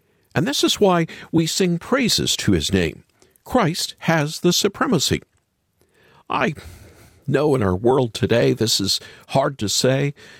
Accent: American